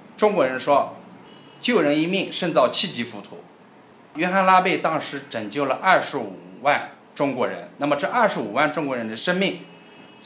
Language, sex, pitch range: Chinese, male, 120-180 Hz